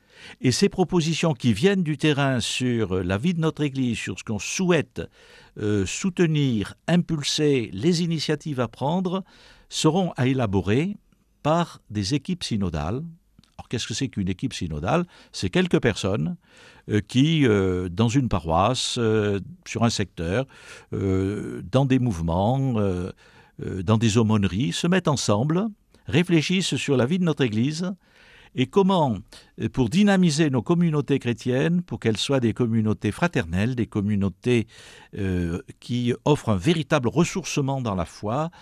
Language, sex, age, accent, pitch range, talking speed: French, male, 50-69, French, 105-160 Hz, 145 wpm